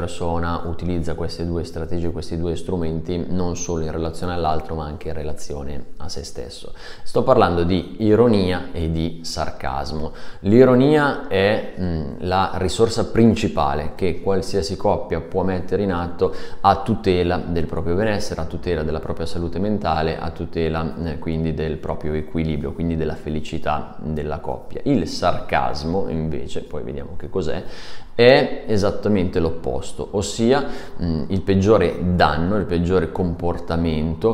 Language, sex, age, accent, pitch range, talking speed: Italian, male, 30-49, native, 80-95 Hz, 140 wpm